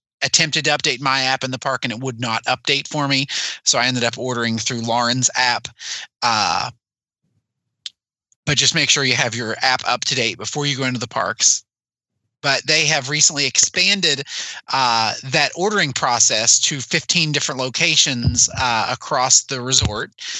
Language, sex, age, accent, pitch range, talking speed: English, male, 30-49, American, 130-155 Hz, 170 wpm